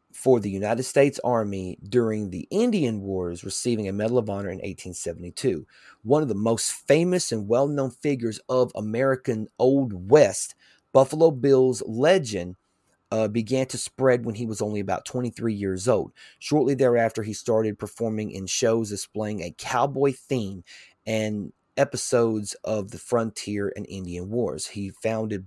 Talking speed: 150 wpm